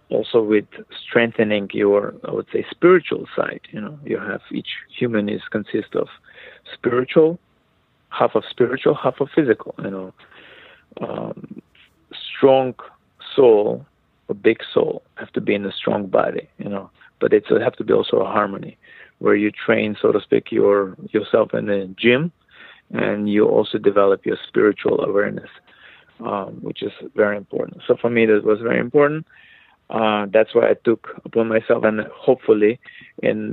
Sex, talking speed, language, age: male, 160 wpm, English, 40-59